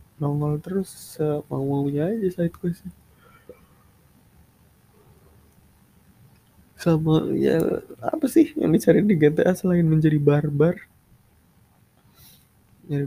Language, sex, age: English, male, 20-39